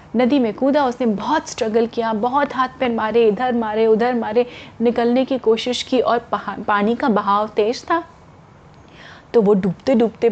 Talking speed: 175 wpm